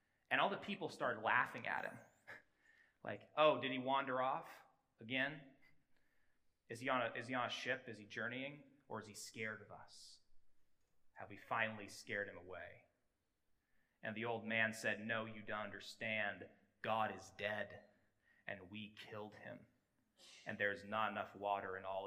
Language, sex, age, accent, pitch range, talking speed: English, male, 30-49, American, 105-130 Hz, 160 wpm